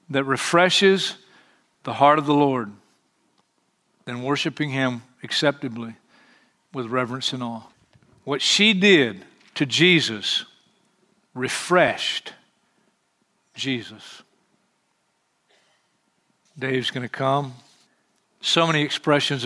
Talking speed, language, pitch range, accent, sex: 85 wpm, English, 130-180 Hz, American, male